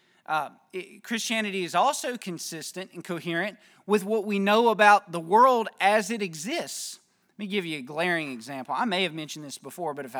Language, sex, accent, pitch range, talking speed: English, male, American, 155-200 Hz, 195 wpm